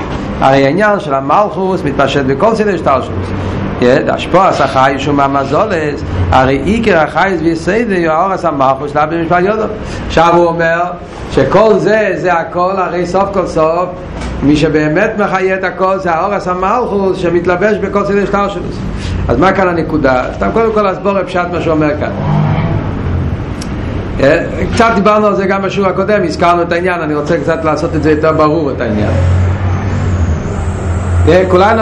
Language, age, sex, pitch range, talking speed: Hebrew, 50-69, male, 130-190 Hz, 145 wpm